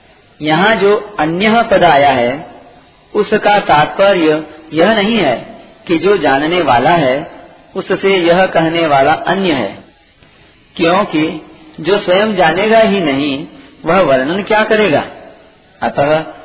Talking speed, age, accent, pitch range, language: 120 wpm, 40-59, native, 140-190 Hz, Hindi